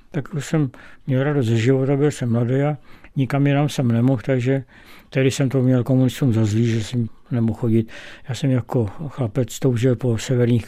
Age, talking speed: 60-79, 185 wpm